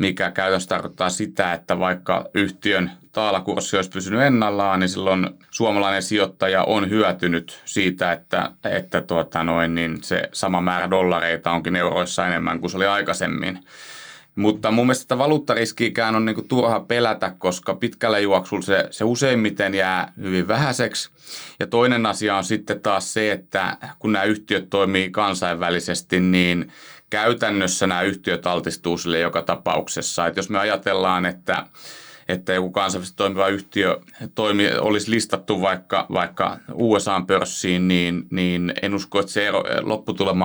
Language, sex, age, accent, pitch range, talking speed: Finnish, male, 30-49, native, 90-105 Hz, 135 wpm